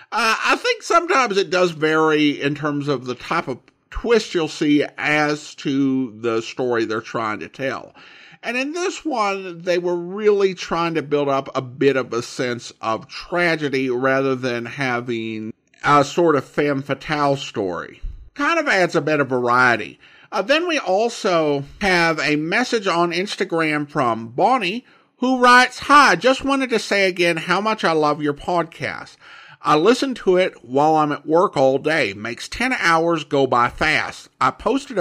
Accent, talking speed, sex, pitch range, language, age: American, 175 wpm, male, 135-195 Hz, English, 50-69